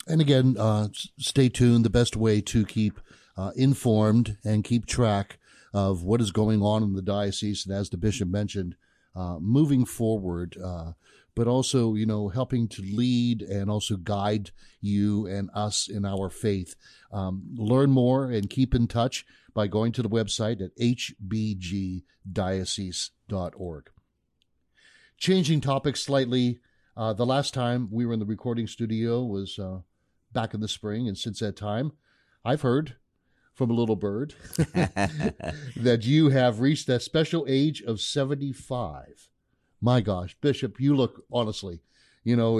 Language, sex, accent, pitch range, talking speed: English, male, American, 100-125 Hz, 150 wpm